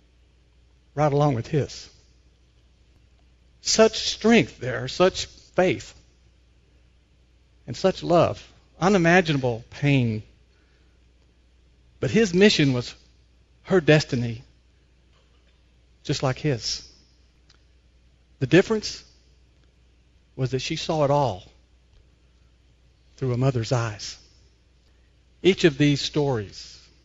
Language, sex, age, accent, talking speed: English, male, 50-69, American, 85 wpm